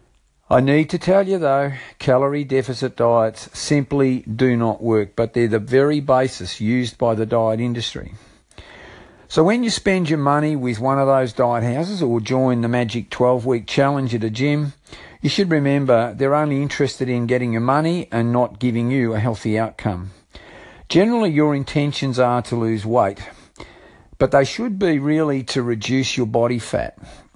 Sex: male